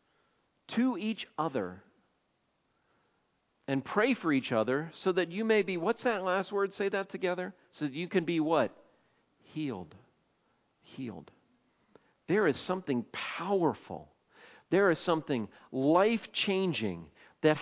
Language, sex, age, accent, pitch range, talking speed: English, male, 50-69, American, 140-190 Hz, 125 wpm